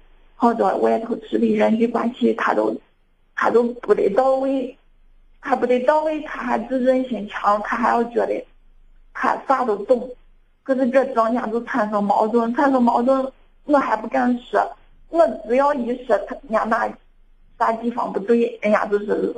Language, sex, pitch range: Chinese, female, 230-270 Hz